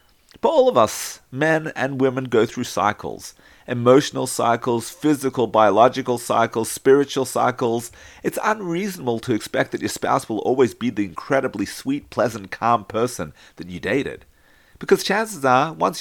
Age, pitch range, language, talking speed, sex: 40-59, 110-155 Hz, English, 150 wpm, male